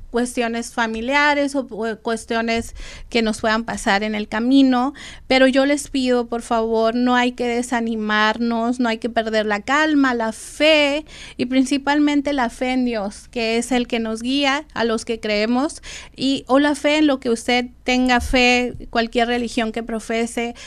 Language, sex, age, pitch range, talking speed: Spanish, female, 30-49, 225-250 Hz, 175 wpm